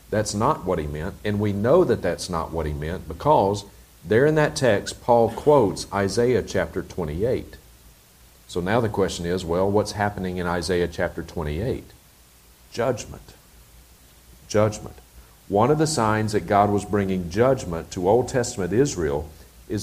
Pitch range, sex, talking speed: 85-115 Hz, male, 155 wpm